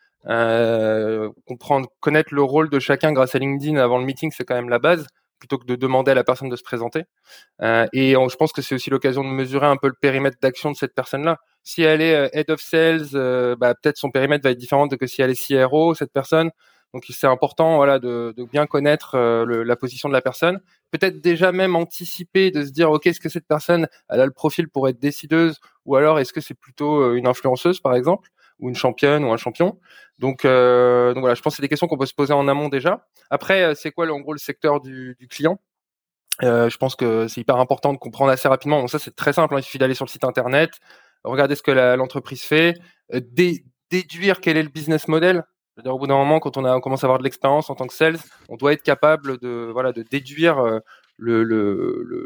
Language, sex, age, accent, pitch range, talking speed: French, male, 20-39, French, 130-155 Hz, 245 wpm